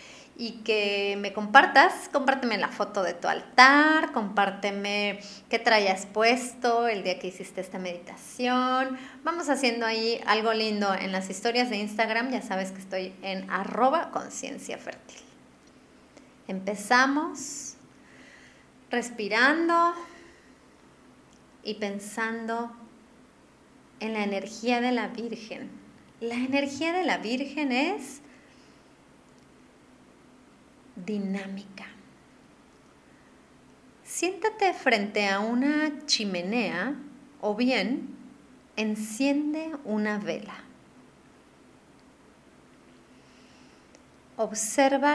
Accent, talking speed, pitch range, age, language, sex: Mexican, 85 wpm, 205-265 Hz, 30-49, Spanish, female